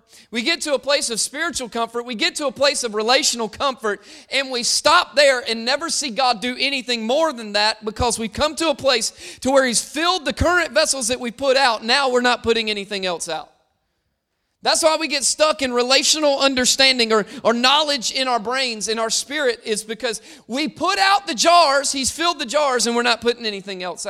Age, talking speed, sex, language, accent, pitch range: 30-49, 215 wpm, male, English, American, 225-275 Hz